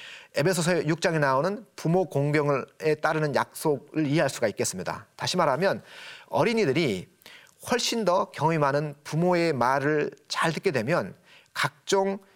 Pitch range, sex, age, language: 140-185 Hz, male, 30-49, Korean